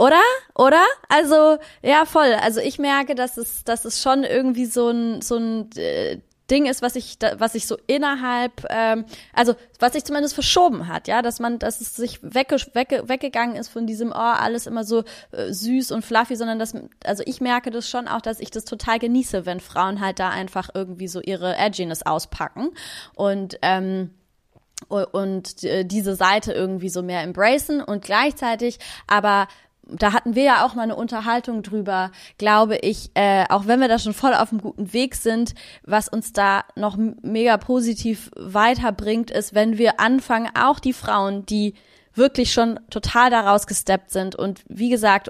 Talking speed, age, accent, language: 185 wpm, 20-39, German, German